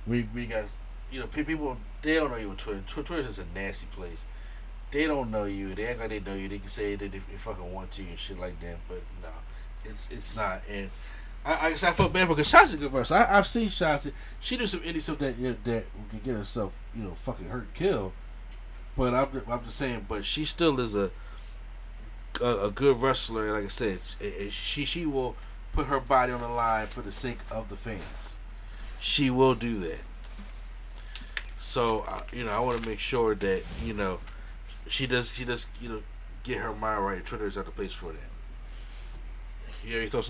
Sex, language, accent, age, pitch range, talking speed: male, English, American, 30-49, 100-135 Hz, 220 wpm